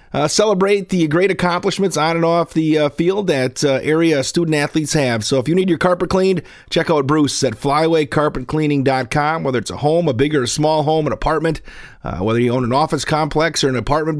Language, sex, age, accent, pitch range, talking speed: English, male, 40-59, American, 140-190 Hz, 210 wpm